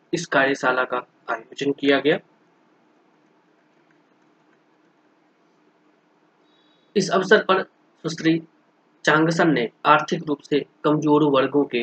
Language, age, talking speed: Hindi, 20-39, 100 wpm